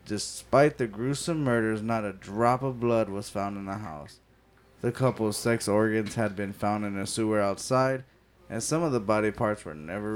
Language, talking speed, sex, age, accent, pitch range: English, 195 wpm, male, 20-39, American, 105-120 Hz